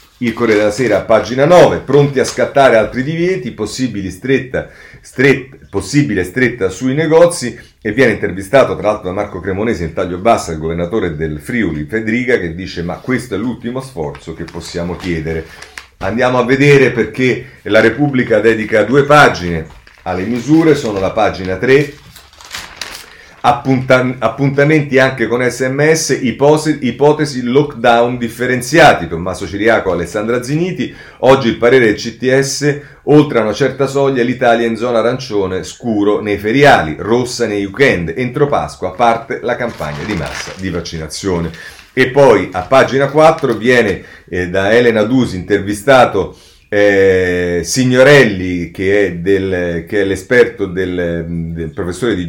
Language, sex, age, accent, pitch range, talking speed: Italian, male, 40-59, native, 90-130 Hz, 140 wpm